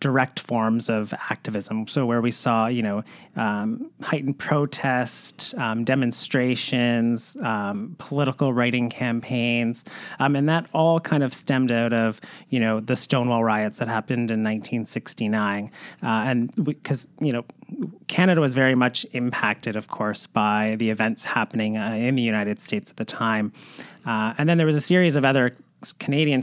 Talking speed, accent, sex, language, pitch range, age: 160 wpm, American, male, English, 115-150 Hz, 30-49